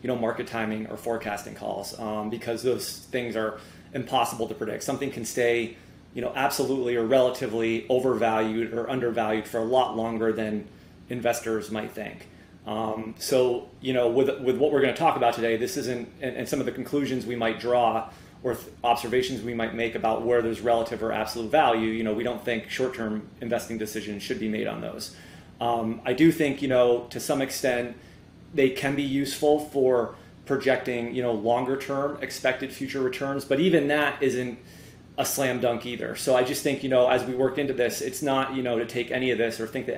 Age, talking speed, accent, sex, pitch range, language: 30-49, 205 wpm, American, male, 115-130 Hz, English